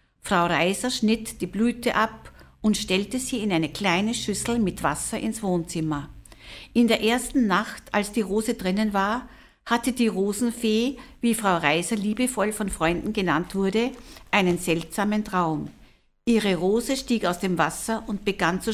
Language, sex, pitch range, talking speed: German, female, 175-220 Hz, 155 wpm